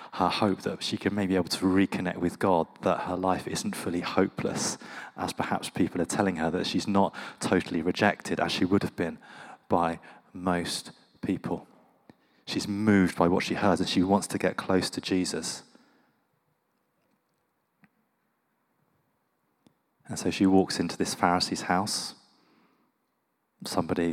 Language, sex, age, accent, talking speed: English, male, 30-49, British, 145 wpm